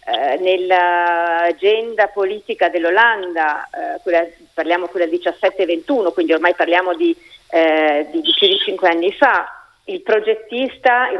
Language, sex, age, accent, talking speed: Italian, female, 40-59, native, 135 wpm